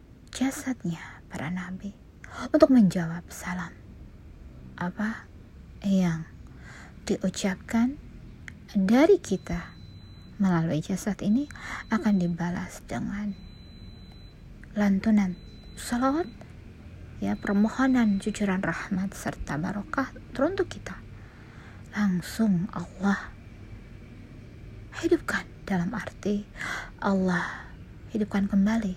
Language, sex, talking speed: Indonesian, female, 75 wpm